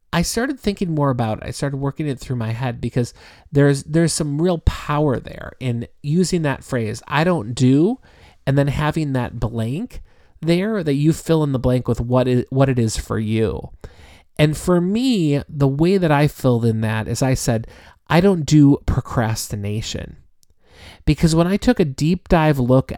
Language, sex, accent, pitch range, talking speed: English, male, American, 120-155 Hz, 190 wpm